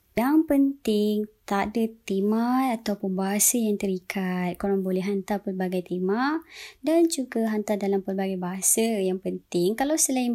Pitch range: 195-240 Hz